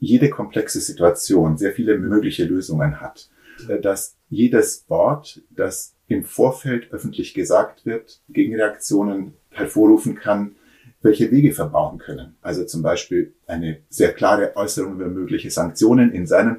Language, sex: German, male